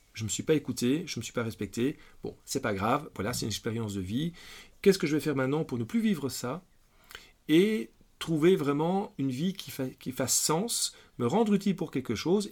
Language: French